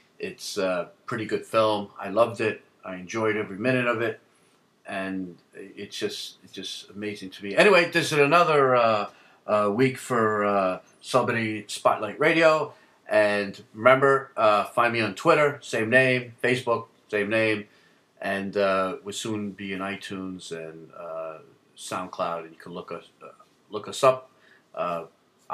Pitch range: 95-120 Hz